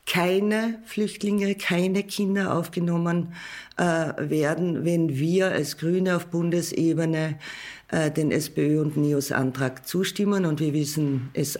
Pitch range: 160-185 Hz